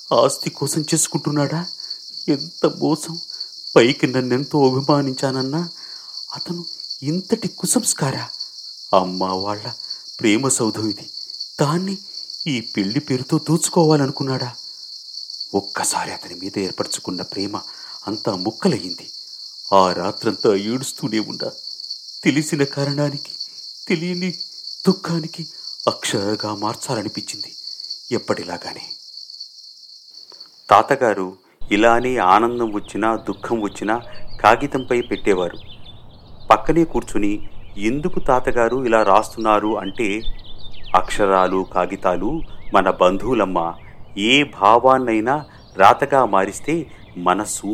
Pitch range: 105-150 Hz